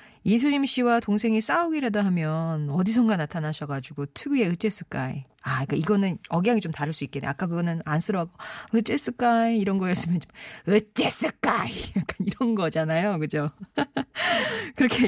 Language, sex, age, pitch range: Korean, female, 40-59, 155-225 Hz